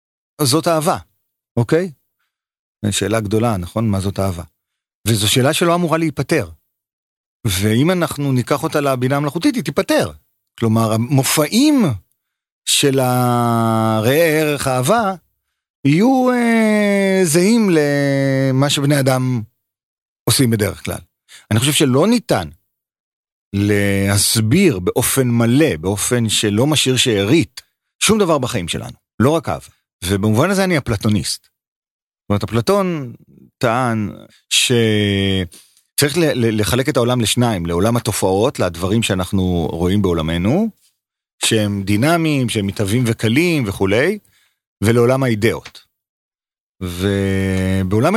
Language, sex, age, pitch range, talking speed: Hebrew, male, 40-59, 105-150 Hz, 105 wpm